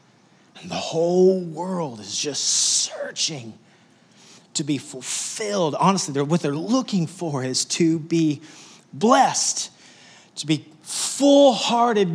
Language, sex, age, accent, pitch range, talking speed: English, male, 30-49, American, 140-200 Hz, 105 wpm